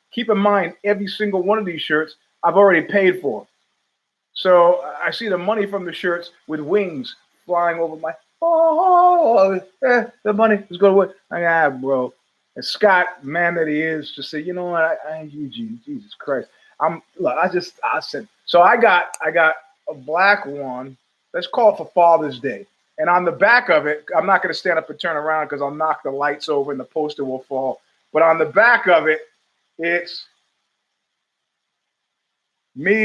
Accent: American